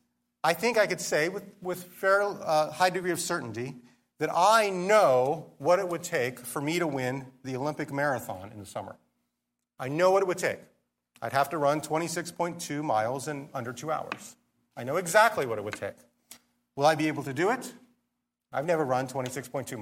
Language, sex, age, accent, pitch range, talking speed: English, male, 40-59, American, 125-185 Hz, 190 wpm